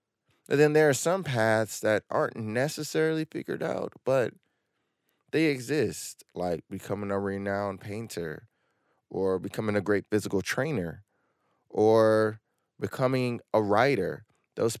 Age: 20-39